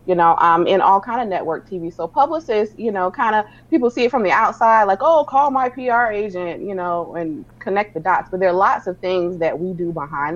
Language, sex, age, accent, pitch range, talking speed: English, female, 30-49, American, 165-210 Hz, 255 wpm